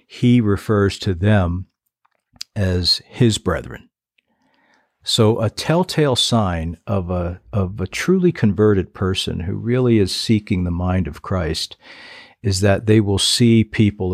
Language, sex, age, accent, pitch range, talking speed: English, male, 60-79, American, 95-110 Hz, 135 wpm